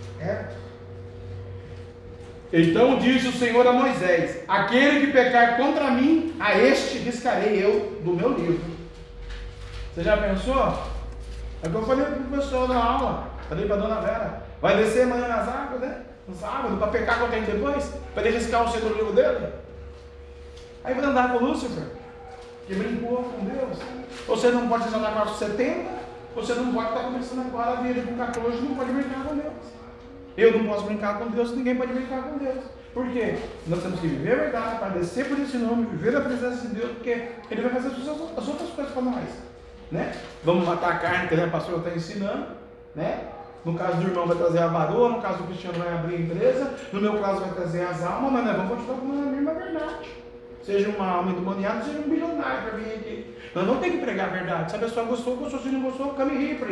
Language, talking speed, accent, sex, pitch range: Portuguese, 210 wpm, Brazilian, male, 175-255 Hz